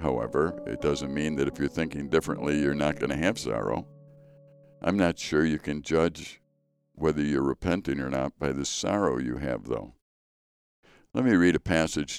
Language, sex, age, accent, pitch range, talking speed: English, male, 60-79, American, 75-95 Hz, 180 wpm